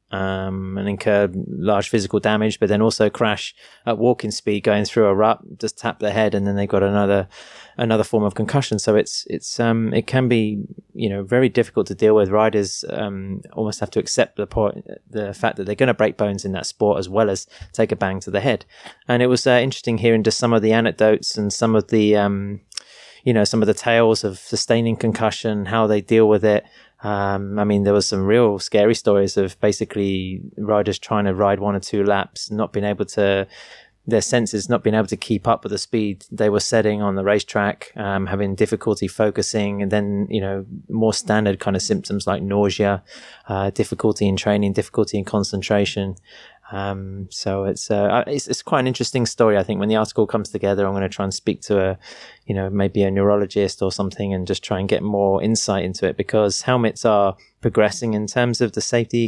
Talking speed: 215 wpm